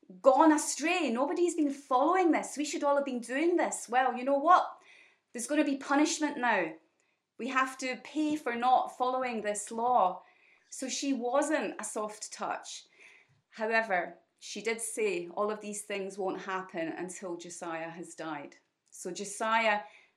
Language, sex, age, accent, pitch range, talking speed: English, female, 30-49, British, 185-260 Hz, 160 wpm